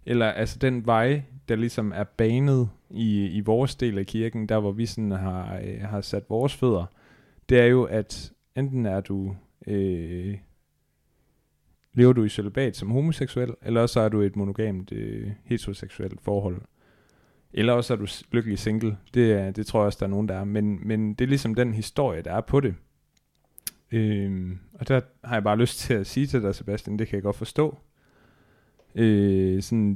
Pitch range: 100-125 Hz